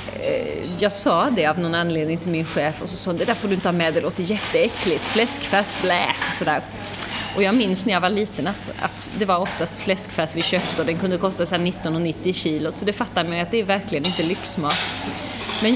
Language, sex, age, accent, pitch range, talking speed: Swedish, female, 30-49, native, 175-230 Hz, 225 wpm